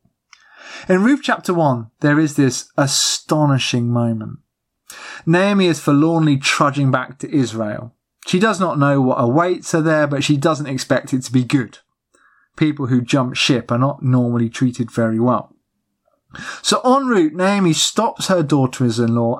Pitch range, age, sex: 125-170 Hz, 30-49, male